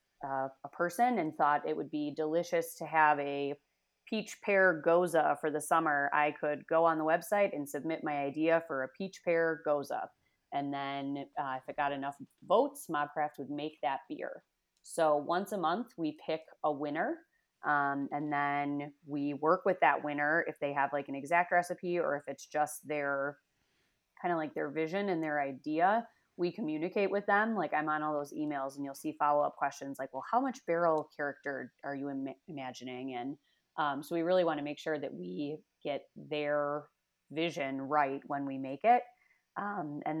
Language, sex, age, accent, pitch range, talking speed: English, female, 30-49, American, 145-175 Hz, 190 wpm